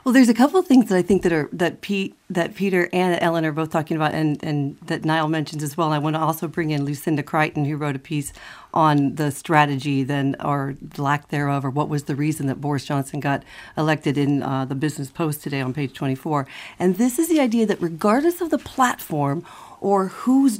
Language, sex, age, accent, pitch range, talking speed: English, female, 40-59, American, 155-205 Hz, 230 wpm